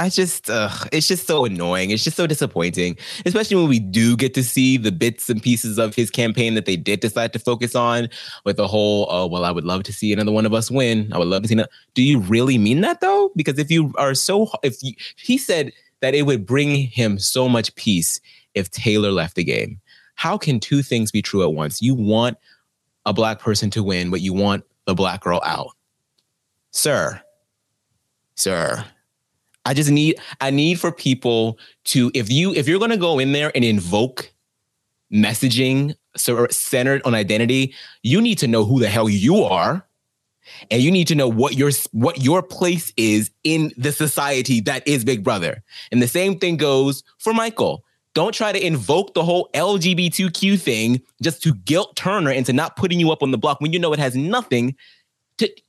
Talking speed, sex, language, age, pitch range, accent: 205 wpm, male, English, 20-39, 110-155 Hz, American